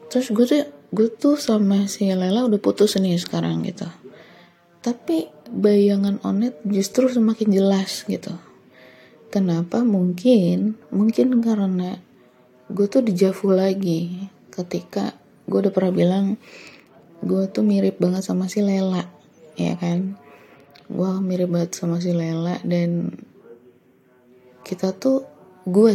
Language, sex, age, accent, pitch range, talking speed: Indonesian, female, 20-39, native, 180-210 Hz, 120 wpm